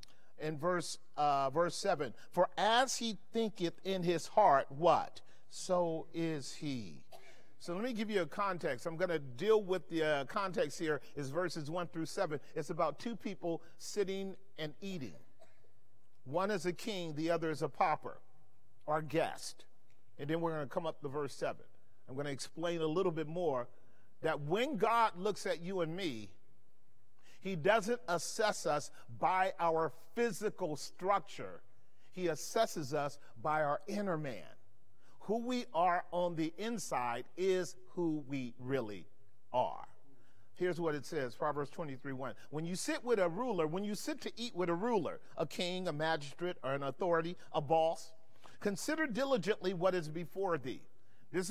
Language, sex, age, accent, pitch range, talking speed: English, male, 40-59, American, 140-185 Hz, 165 wpm